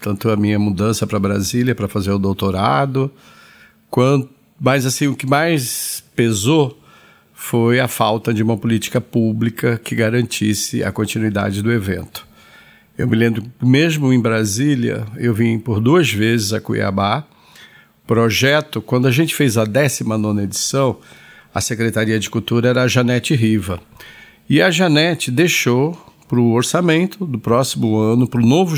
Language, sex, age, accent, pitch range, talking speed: Portuguese, male, 50-69, Brazilian, 110-140 Hz, 150 wpm